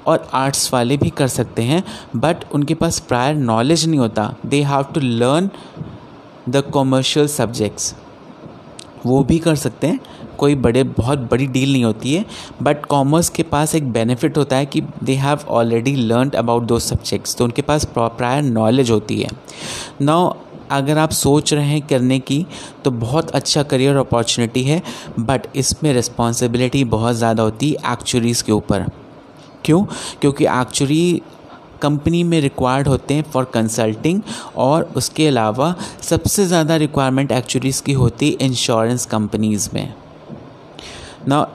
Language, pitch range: Hindi, 120-155 Hz